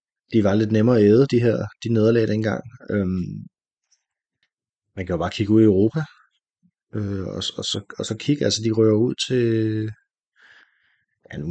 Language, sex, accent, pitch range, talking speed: Danish, male, native, 95-110 Hz, 175 wpm